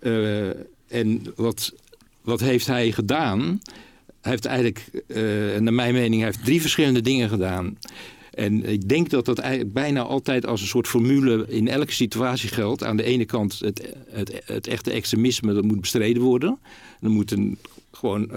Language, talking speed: Dutch, 180 wpm